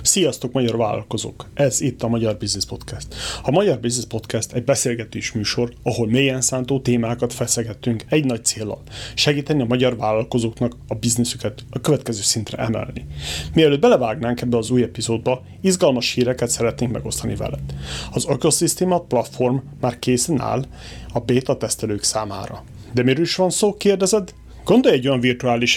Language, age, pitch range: Hungarian, 30-49, 115-145 Hz